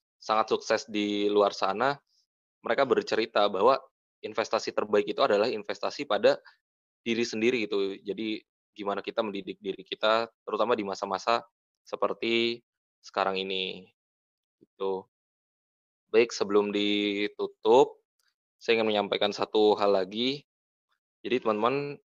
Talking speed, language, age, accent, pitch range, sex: 110 wpm, Indonesian, 20-39, native, 105-150 Hz, male